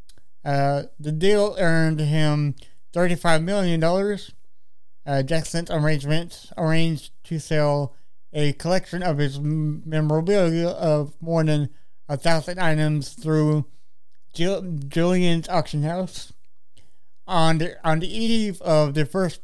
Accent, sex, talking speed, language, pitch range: American, male, 115 wpm, English, 150-175 Hz